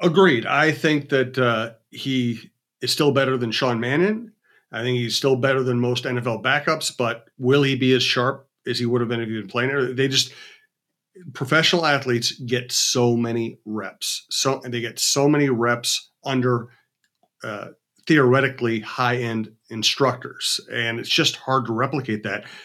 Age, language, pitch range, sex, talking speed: 40-59, English, 115-140 Hz, male, 175 wpm